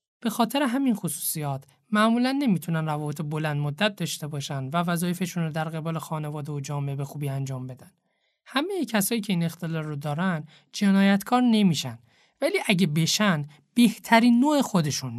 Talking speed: 150 wpm